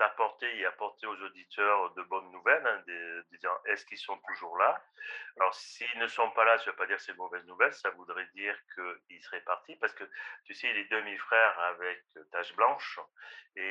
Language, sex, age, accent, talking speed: French, male, 40-59, French, 200 wpm